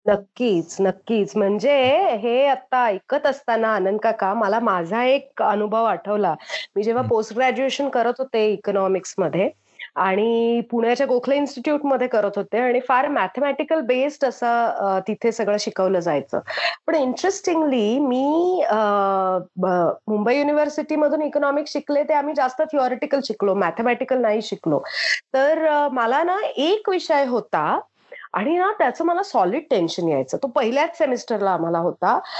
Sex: female